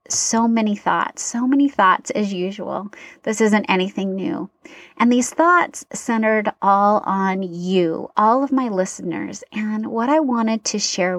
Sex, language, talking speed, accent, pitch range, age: female, English, 155 wpm, American, 195-245 Hz, 30-49